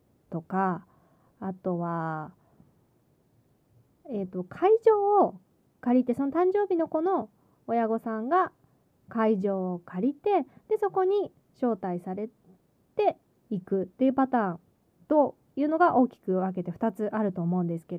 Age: 20-39